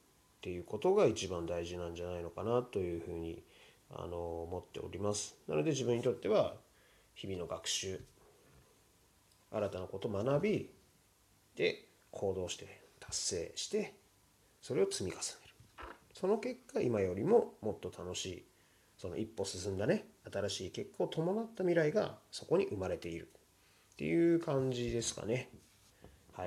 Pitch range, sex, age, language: 90-130 Hz, male, 30-49, Japanese